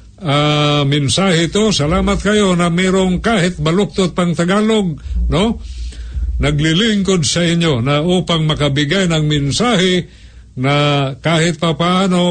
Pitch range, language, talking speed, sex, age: 140-180 Hz, Filipino, 110 wpm, male, 50-69